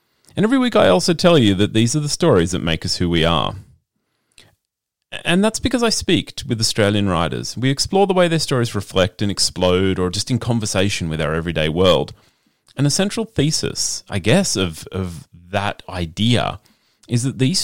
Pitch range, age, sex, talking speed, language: 95-155 Hz, 30-49, male, 190 wpm, English